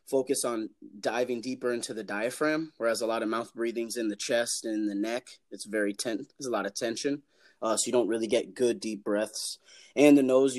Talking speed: 225 wpm